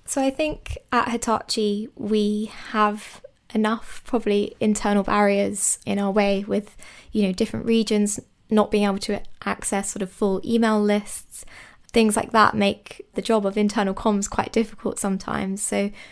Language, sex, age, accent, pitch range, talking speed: English, female, 20-39, British, 195-220 Hz, 155 wpm